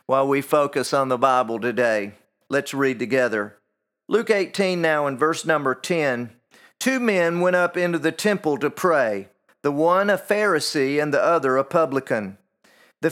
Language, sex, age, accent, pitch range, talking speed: English, male, 40-59, American, 130-175 Hz, 165 wpm